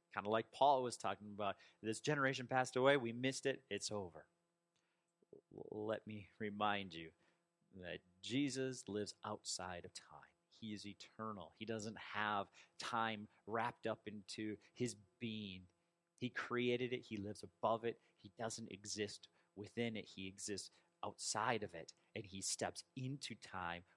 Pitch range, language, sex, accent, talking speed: 100-145 Hz, English, male, American, 150 wpm